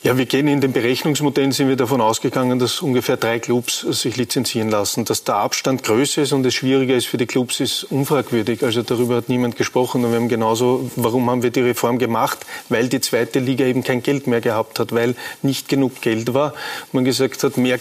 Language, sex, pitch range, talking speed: German, male, 125-140 Hz, 220 wpm